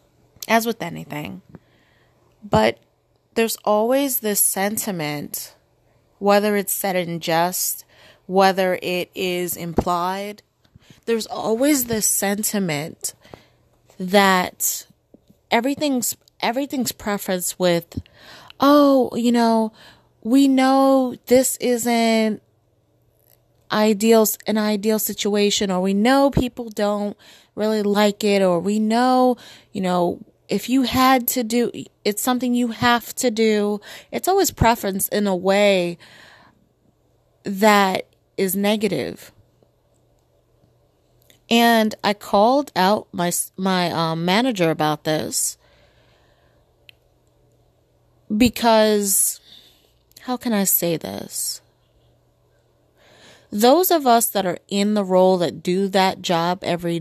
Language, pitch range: English, 175-230 Hz